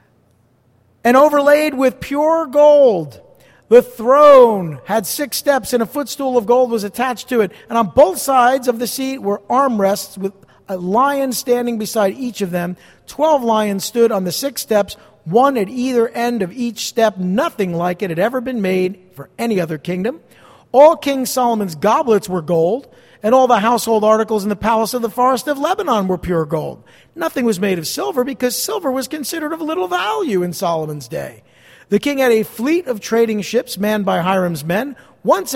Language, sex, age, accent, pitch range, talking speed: English, male, 50-69, American, 190-255 Hz, 185 wpm